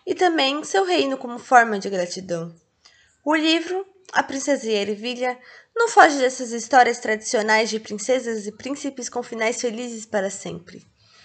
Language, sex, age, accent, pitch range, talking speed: Portuguese, female, 20-39, Brazilian, 225-290 Hz, 150 wpm